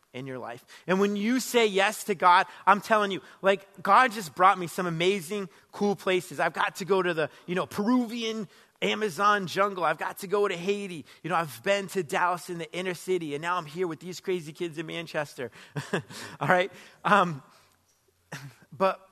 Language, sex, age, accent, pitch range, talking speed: English, male, 30-49, American, 145-190 Hz, 200 wpm